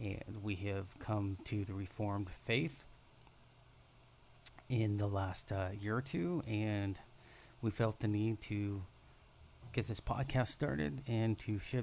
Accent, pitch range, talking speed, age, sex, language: American, 100-120 Hz, 140 wpm, 30-49, male, English